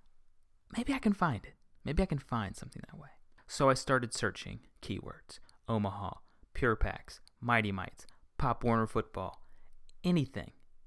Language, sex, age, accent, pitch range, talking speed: English, male, 30-49, American, 115-150 Hz, 145 wpm